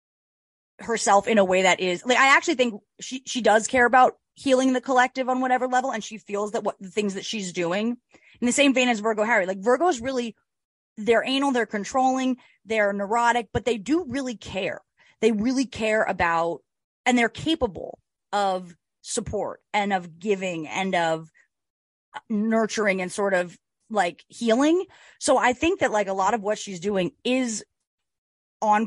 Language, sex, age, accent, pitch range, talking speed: English, female, 30-49, American, 190-240 Hz, 175 wpm